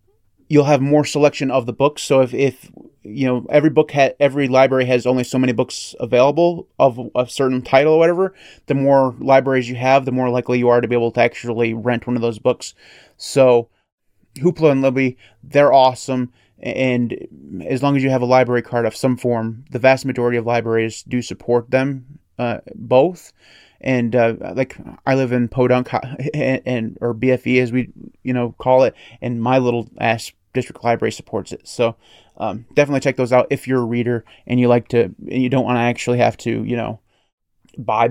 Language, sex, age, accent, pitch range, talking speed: English, male, 30-49, American, 120-135 Hz, 200 wpm